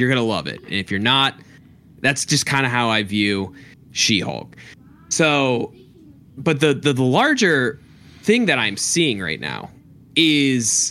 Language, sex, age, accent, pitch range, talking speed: English, male, 20-39, American, 115-140 Hz, 165 wpm